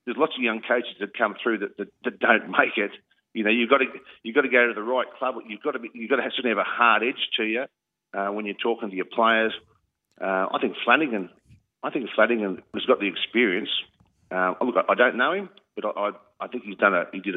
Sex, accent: male, Australian